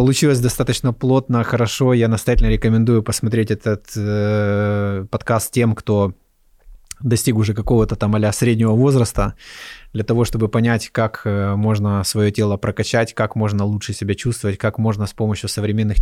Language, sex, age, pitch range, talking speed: Russian, male, 20-39, 105-125 Hz, 150 wpm